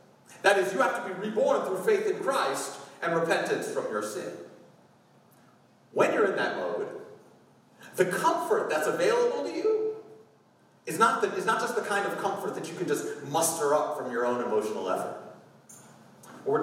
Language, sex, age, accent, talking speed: English, male, 40-59, American, 175 wpm